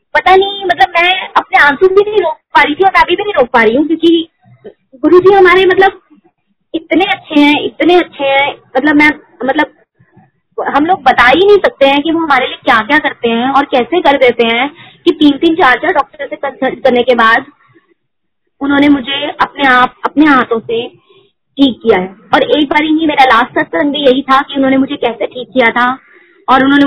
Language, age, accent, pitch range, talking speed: Hindi, 20-39, native, 255-320 Hz, 205 wpm